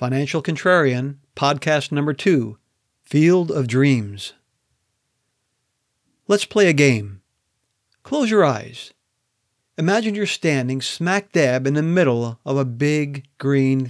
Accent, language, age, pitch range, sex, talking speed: American, English, 40-59, 125-170 Hz, male, 115 wpm